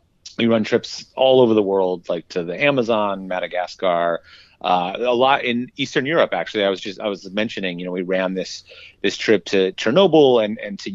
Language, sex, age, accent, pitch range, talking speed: English, male, 30-49, American, 95-115 Hz, 205 wpm